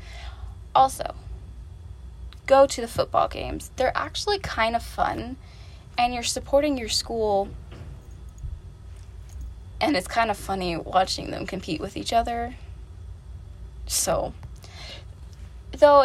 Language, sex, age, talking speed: English, female, 10-29, 110 wpm